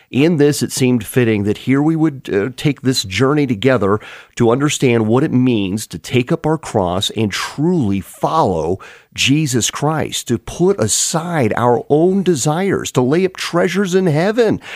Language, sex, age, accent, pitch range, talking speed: English, male, 40-59, American, 105-145 Hz, 165 wpm